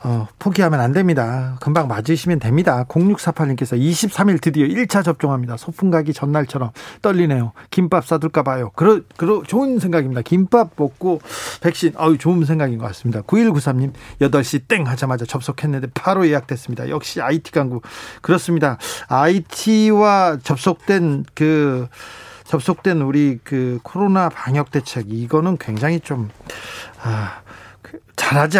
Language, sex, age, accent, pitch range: Korean, male, 40-59, native, 135-185 Hz